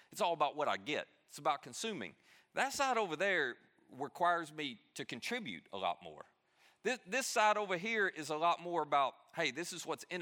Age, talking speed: 40-59, 205 wpm